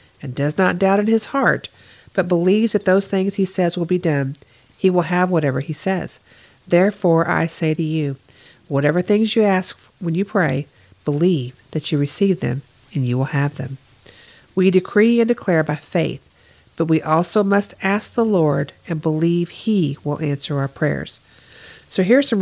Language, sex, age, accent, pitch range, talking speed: English, female, 50-69, American, 145-190 Hz, 180 wpm